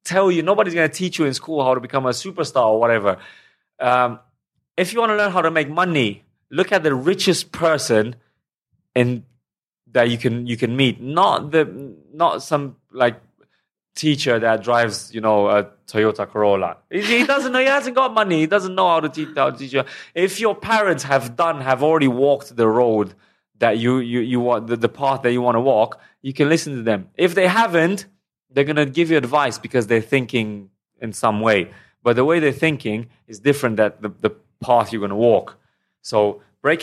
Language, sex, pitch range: English, male, 115-155 Hz